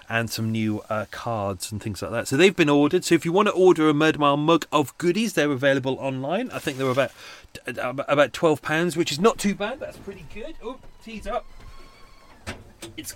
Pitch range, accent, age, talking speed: 110-155 Hz, British, 30-49, 210 wpm